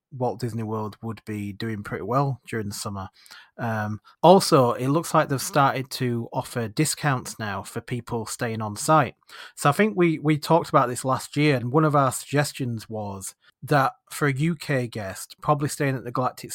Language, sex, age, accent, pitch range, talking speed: English, male, 30-49, British, 115-145 Hz, 190 wpm